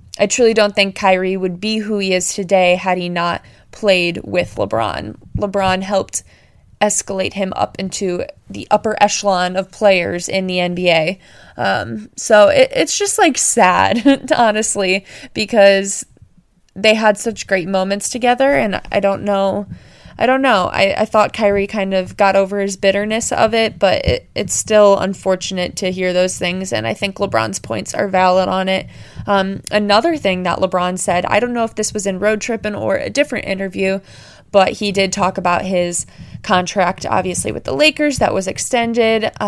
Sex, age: female, 20-39